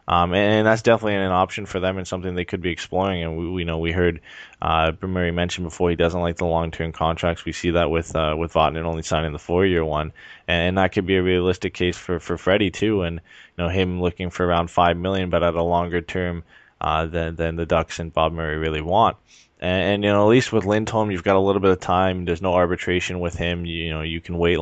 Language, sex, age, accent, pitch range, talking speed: English, male, 20-39, American, 85-95 Hz, 260 wpm